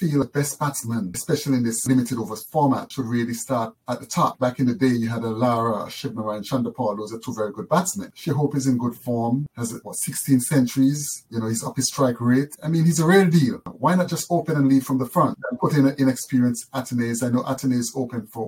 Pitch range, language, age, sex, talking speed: 115-135 Hz, English, 30-49, male, 245 wpm